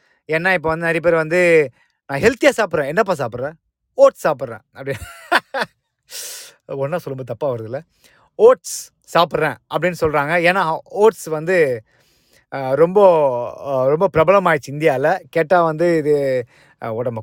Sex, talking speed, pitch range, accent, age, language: male, 120 wpm, 145-185 Hz, native, 20-39, Tamil